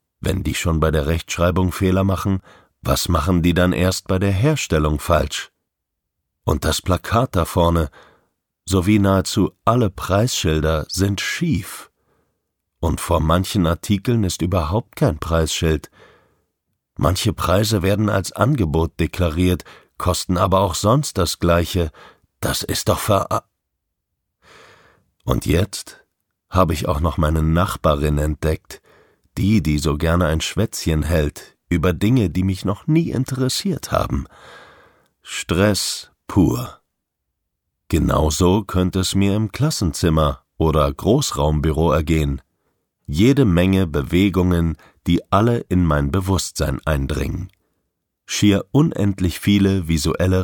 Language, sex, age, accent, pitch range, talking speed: German, male, 50-69, German, 80-100 Hz, 120 wpm